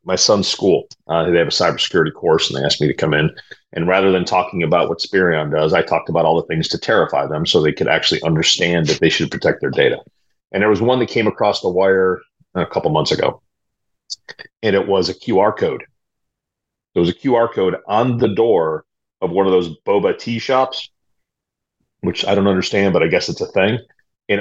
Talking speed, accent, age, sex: 220 wpm, American, 30-49, male